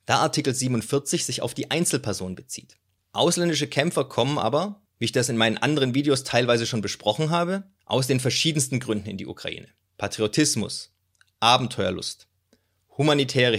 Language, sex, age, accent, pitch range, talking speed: German, male, 30-49, German, 110-145 Hz, 145 wpm